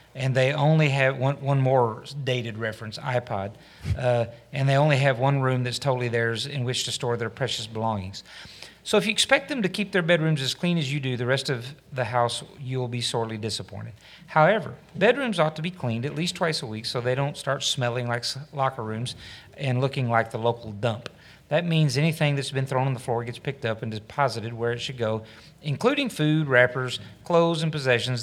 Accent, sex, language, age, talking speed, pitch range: American, male, English, 40-59, 210 wpm, 120-145 Hz